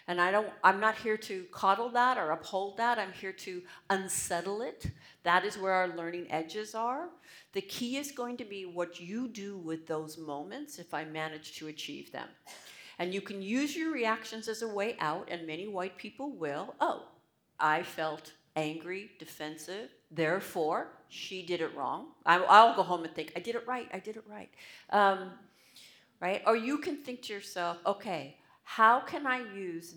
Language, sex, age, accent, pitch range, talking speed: English, female, 50-69, American, 160-210 Hz, 190 wpm